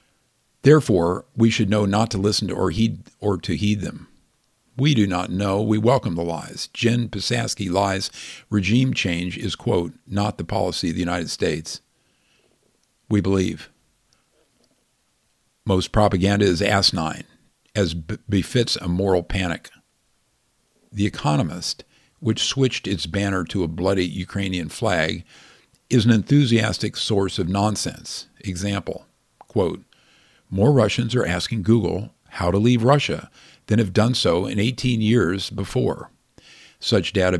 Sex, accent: male, American